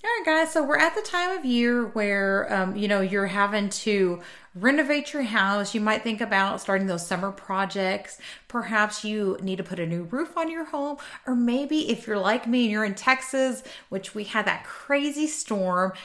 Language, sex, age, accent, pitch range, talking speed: English, female, 30-49, American, 195-260 Hz, 200 wpm